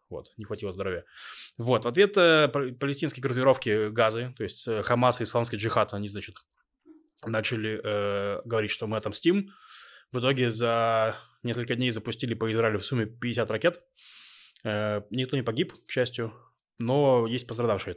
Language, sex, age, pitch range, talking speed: Russian, male, 20-39, 110-145 Hz, 160 wpm